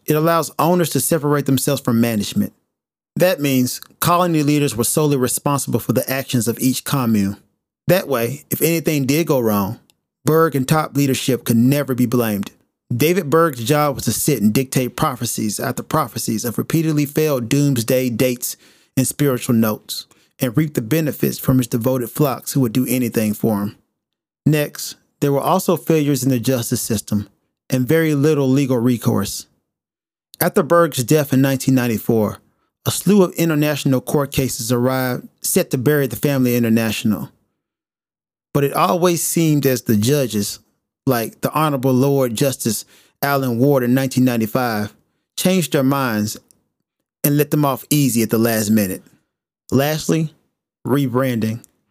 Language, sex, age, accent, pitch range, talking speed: English, male, 30-49, American, 120-150 Hz, 150 wpm